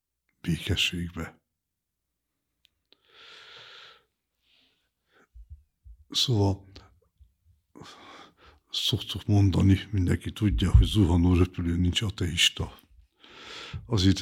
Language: Hungarian